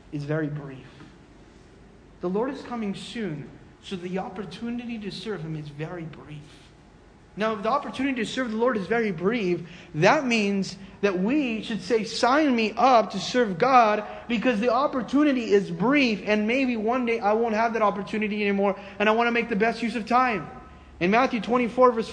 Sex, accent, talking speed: male, American, 180 wpm